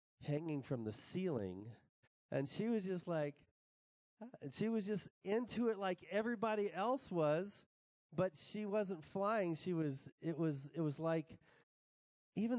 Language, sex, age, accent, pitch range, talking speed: English, male, 40-59, American, 110-160 Hz, 150 wpm